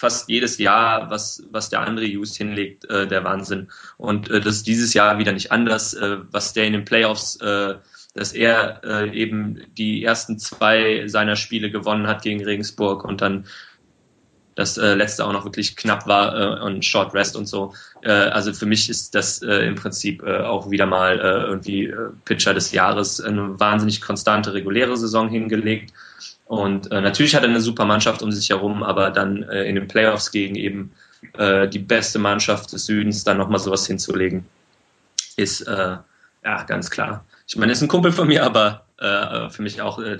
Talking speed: 195 wpm